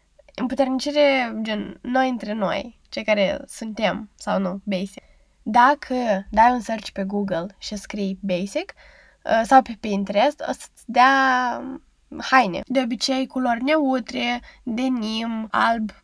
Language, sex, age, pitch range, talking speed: Romanian, female, 10-29, 220-280 Hz, 125 wpm